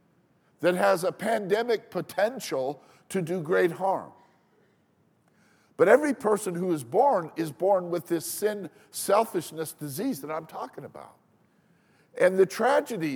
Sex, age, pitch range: male, 50-69, 170-215 Hz